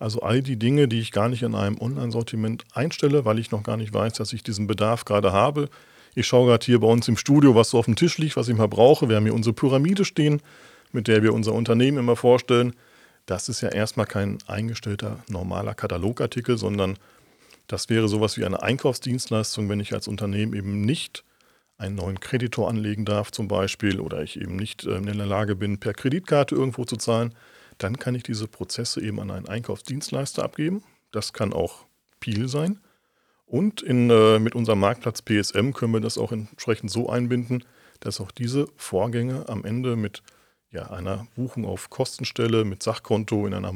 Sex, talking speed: male, 195 wpm